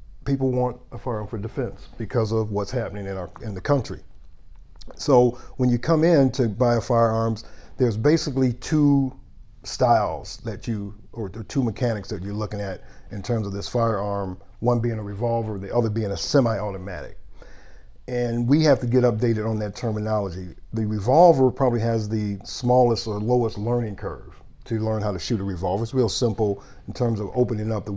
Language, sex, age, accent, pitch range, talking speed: English, male, 50-69, American, 100-120 Hz, 180 wpm